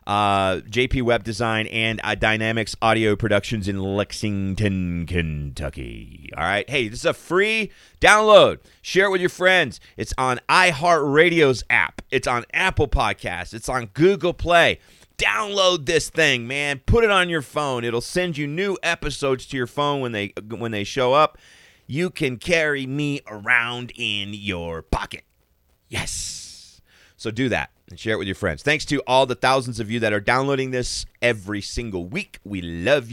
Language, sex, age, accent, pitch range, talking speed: English, male, 30-49, American, 95-145 Hz, 170 wpm